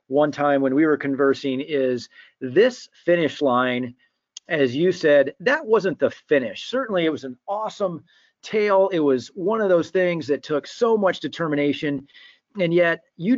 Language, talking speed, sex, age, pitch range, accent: English, 165 wpm, male, 40-59, 135-180 Hz, American